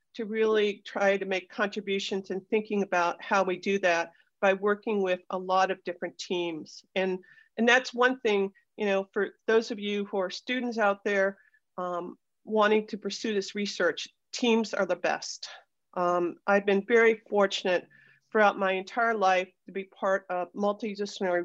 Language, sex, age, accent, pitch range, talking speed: English, female, 50-69, American, 190-225 Hz, 170 wpm